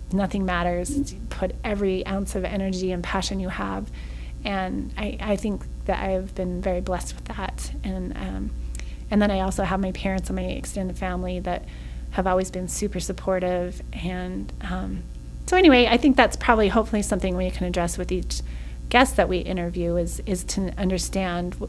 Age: 30-49